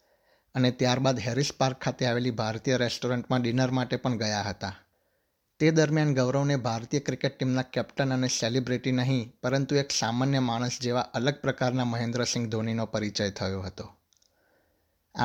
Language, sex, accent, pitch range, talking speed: Gujarati, male, native, 115-135 Hz, 100 wpm